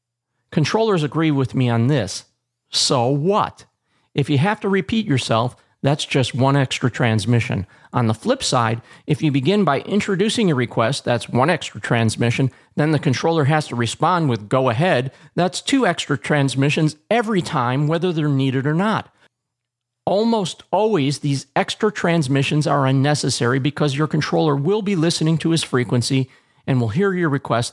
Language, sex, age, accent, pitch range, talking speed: English, male, 40-59, American, 120-155 Hz, 160 wpm